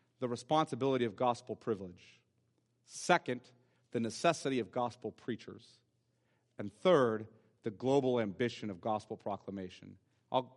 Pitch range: 120-150 Hz